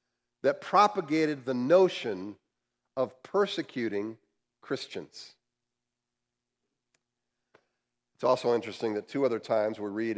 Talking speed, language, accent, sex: 95 wpm, English, American, male